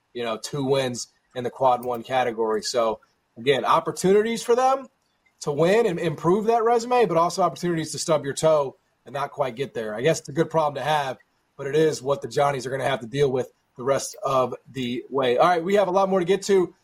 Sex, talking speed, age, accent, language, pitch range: male, 240 wpm, 30-49, American, English, 130-175 Hz